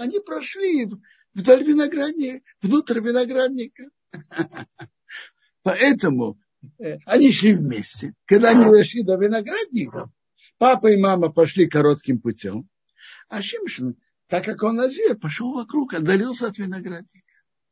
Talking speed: 110 wpm